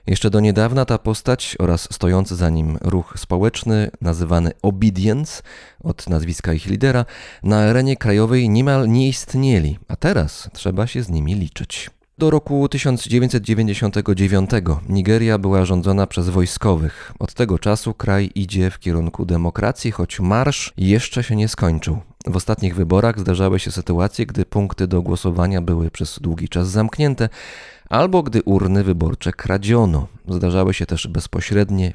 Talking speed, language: 145 wpm, Polish